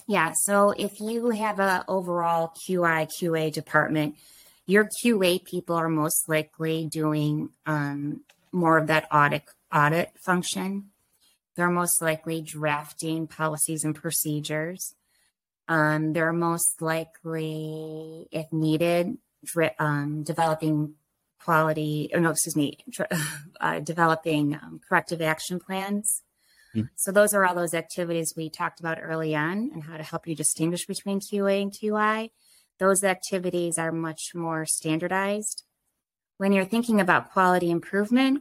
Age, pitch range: 20-39, 160-200 Hz